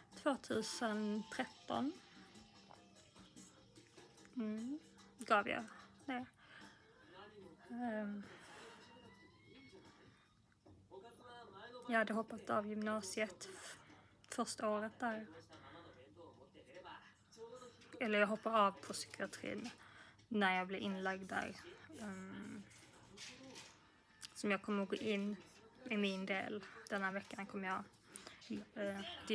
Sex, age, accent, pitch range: female, 20-39, native, 195-225 Hz